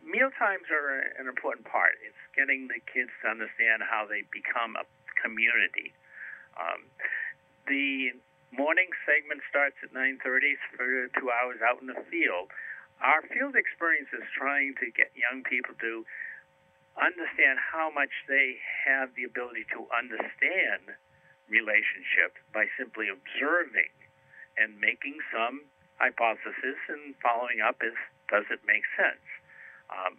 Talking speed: 130 wpm